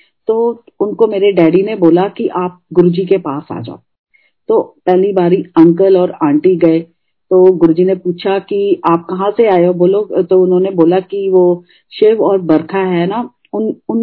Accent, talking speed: native, 180 wpm